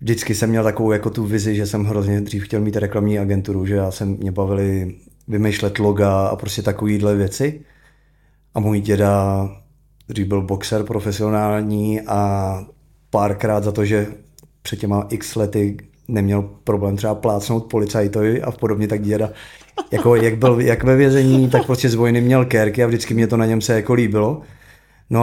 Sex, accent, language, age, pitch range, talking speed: male, native, Czech, 30-49, 105-115 Hz, 170 wpm